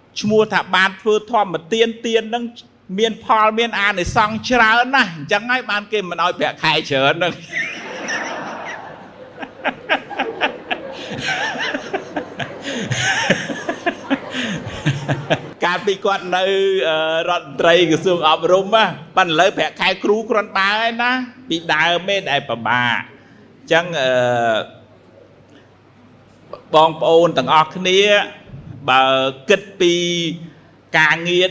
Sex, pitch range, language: male, 160-210 Hz, English